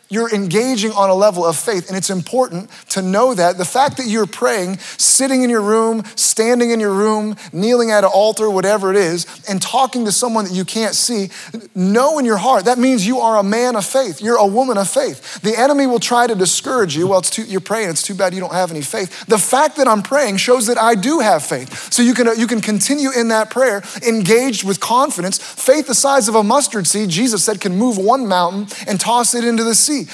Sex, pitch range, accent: male, 190-240 Hz, American